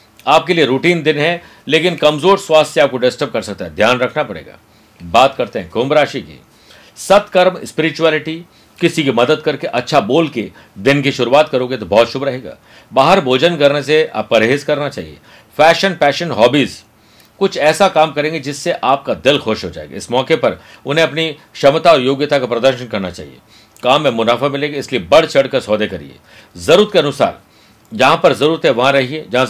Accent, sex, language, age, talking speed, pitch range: native, male, Hindi, 50-69, 185 wpm, 125-160 Hz